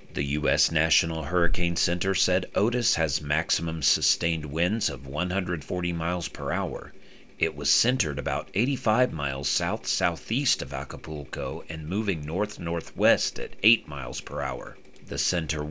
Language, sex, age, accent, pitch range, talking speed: English, male, 40-59, American, 70-100 Hz, 135 wpm